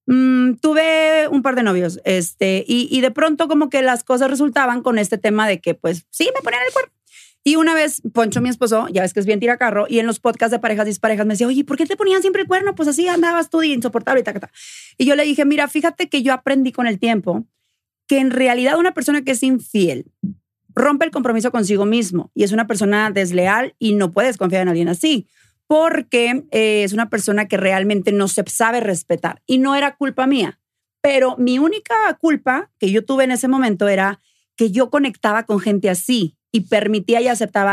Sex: female